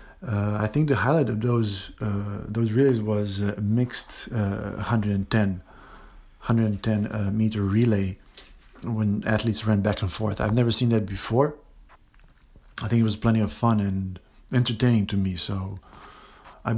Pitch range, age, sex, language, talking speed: 100-115 Hz, 50-69, male, English, 155 wpm